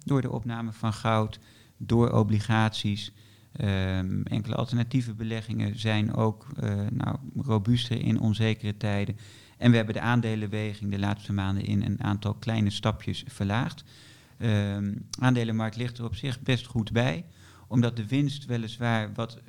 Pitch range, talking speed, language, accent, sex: 105-120 Hz, 150 wpm, Dutch, Dutch, male